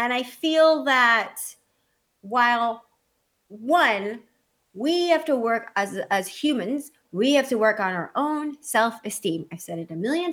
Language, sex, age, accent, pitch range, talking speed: English, female, 30-49, American, 210-280 Hz, 150 wpm